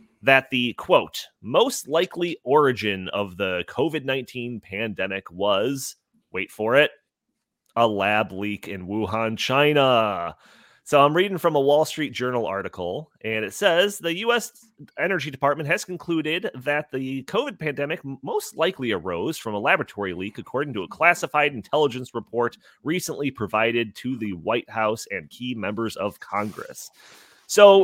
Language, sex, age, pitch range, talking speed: English, male, 30-49, 110-165 Hz, 145 wpm